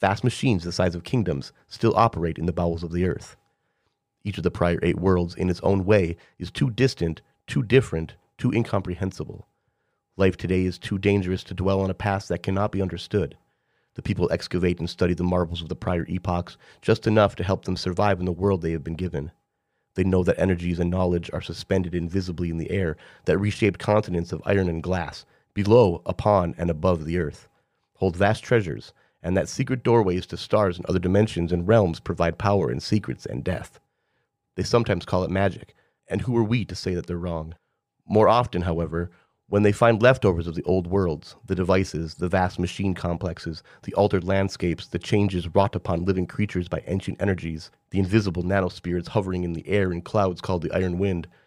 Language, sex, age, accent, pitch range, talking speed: English, male, 30-49, American, 85-100 Hz, 200 wpm